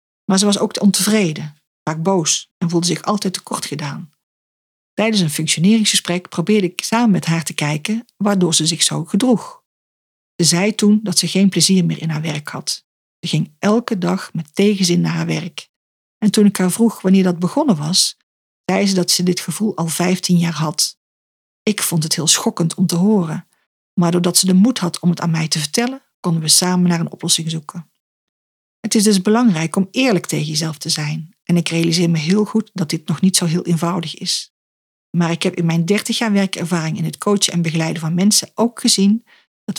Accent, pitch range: Dutch, 165-205 Hz